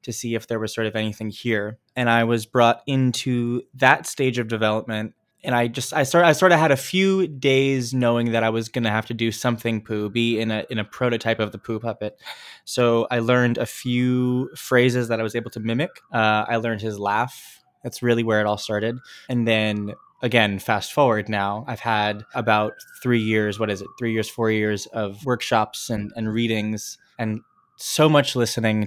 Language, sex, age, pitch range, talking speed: English, male, 20-39, 110-125 Hz, 210 wpm